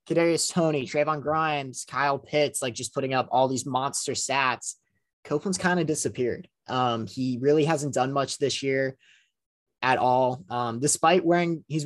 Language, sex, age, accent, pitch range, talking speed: English, male, 20-39, American, 125-155 Hz, 155 wpm